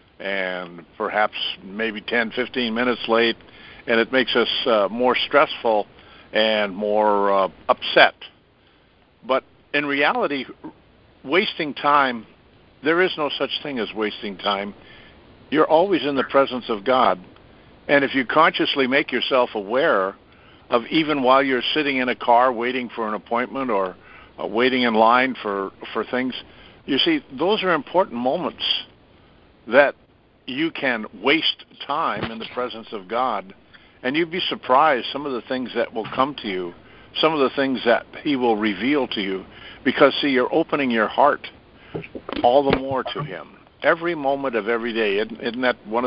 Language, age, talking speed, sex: English, 60-79, 160 wpm, male